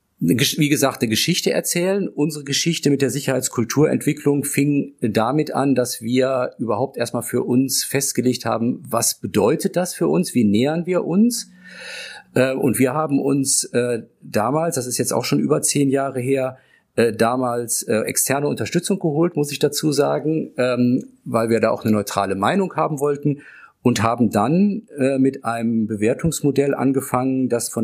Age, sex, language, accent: 50-69, male, German, German